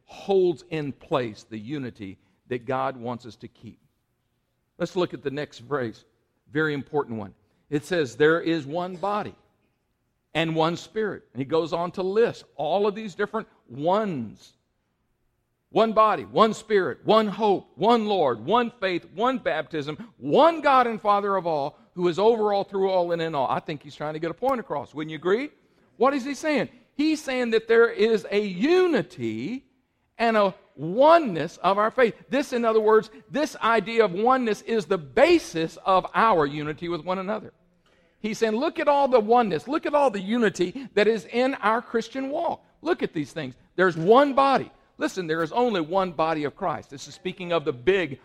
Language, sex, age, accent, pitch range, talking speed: English, male, 50-69, American, 160-230 Hz, 190 wpm